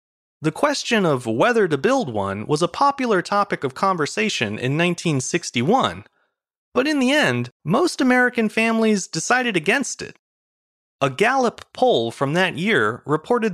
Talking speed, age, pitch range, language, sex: 140 wpm, 30-49, 135-225 Hz, English, male